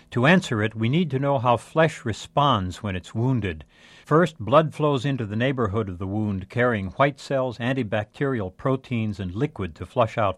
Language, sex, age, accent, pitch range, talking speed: English, male, 60-79, American, 100-140 Hz, 185 wpm